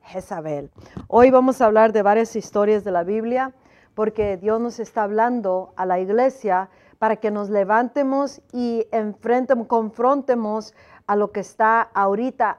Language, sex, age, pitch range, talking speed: Spanish, female, 40-59, 220-270 Hz, 150 wpm